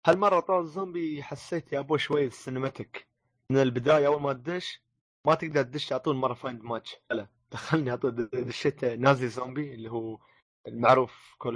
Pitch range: 115-145 Hz